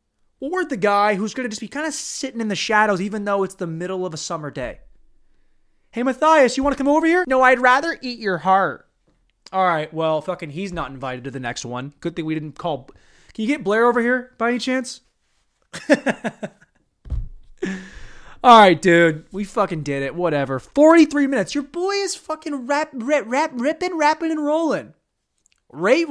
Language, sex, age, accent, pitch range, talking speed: English, male, 20-39, American, 155-250 Hz, 195 wpm